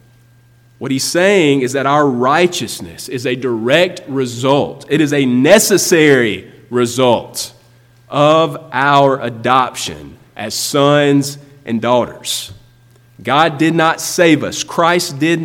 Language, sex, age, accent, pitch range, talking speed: English, male, 30-49, American, 120-150 Hz, 115 wpm